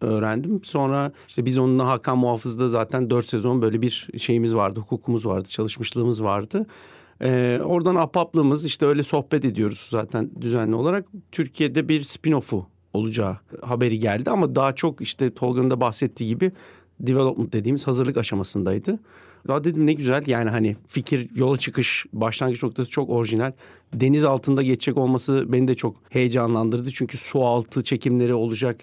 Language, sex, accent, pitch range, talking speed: Turkish, male, native, 120-145 Hz, 150 wpm